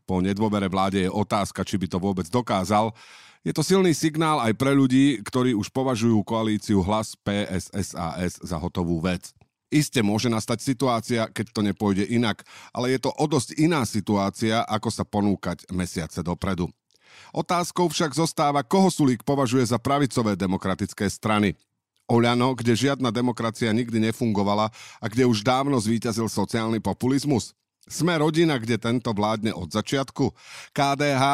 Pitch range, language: 100-135 Hz, Slovak